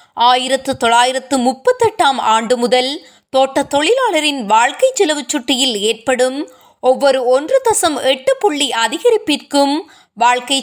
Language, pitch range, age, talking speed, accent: Tamil, 250-315 Hz, 20-39, 75 wpm, native